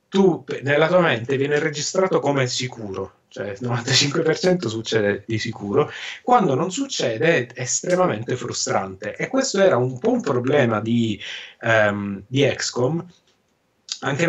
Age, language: 30-49, Italian